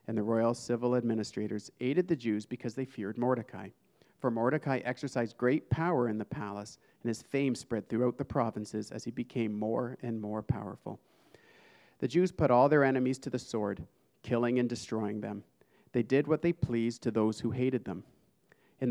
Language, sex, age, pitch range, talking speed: English, male, 40-59, 110-135 Hz, 185 wpm